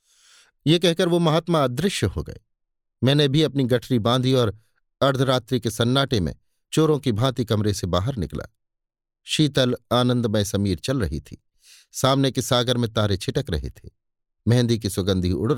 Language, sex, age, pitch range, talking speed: Hindi, male, 50-69, 110-135 Hz, 160 wpm